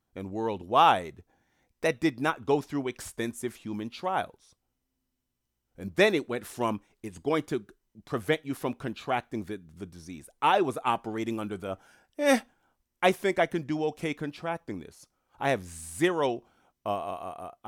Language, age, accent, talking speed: English, 30-49, American, 150 wpm